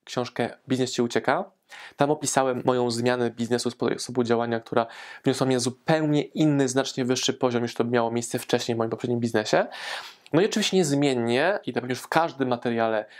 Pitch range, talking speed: 120-150 Hz, 175 wpm